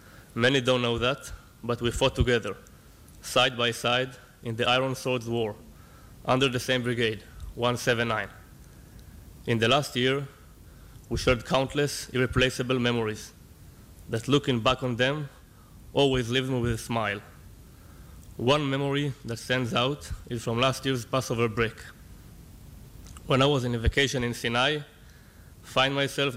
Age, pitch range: 20-39, 115-130 Hz